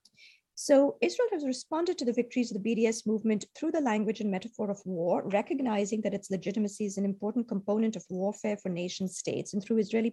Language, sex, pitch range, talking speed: English, female, 190-230 Hz, 200 wpm